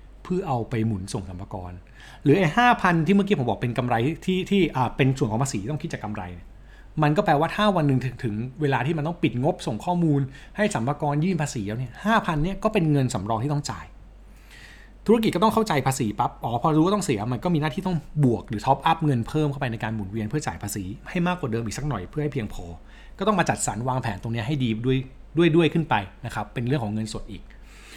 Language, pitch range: Thai, 110-160 Hz